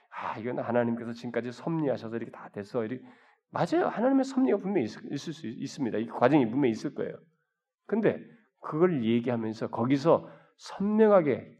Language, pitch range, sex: Korean, 120-180 Hz, male